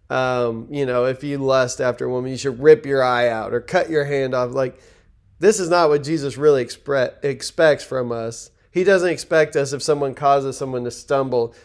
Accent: American